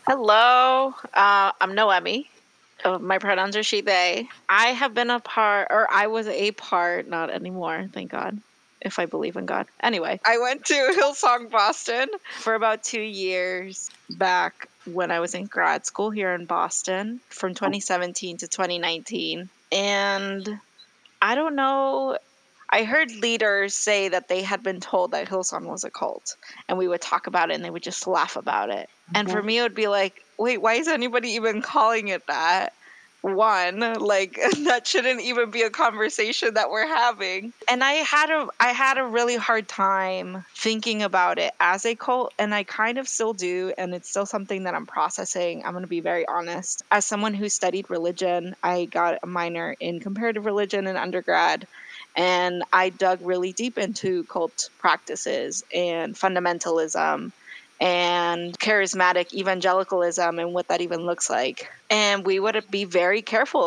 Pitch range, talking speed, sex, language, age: 180-225 Hz, 170 wpm, female, English, 20-39